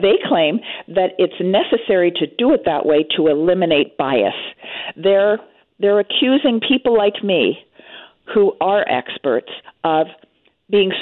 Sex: female